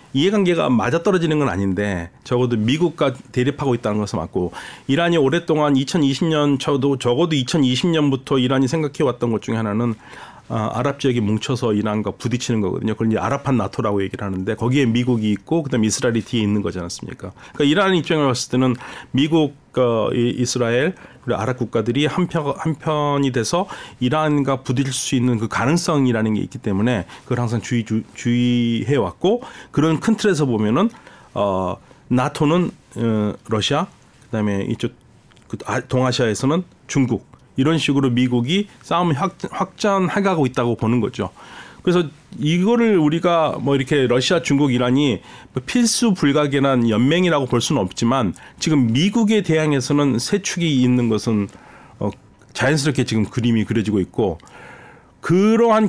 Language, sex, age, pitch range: Korean, male, 40-59, 115-155 Hz